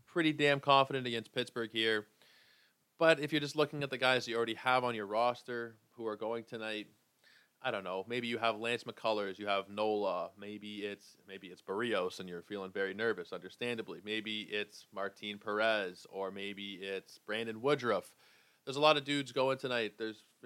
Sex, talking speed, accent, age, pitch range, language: male, 185 wpm, American, 20-39, 105-130 Hz, English